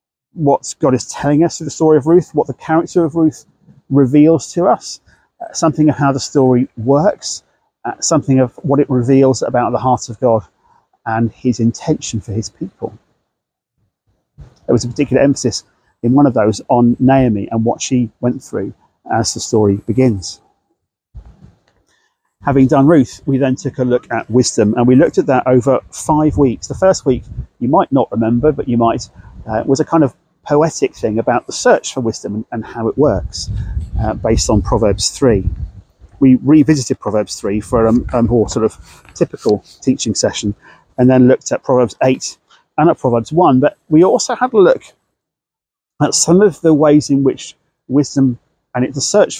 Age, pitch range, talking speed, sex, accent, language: 40-59, 115-145 Hz, 180 wpm, male, British, English